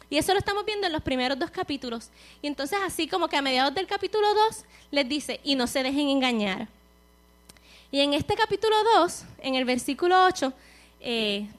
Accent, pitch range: American, 245-370 Hz